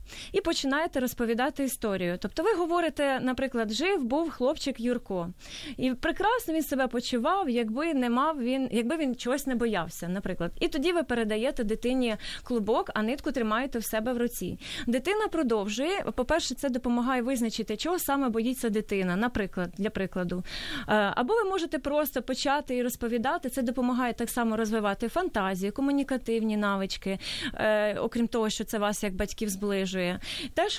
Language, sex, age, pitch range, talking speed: Ukrainian, female, 20-39, 220-285 Hz, 150 wpm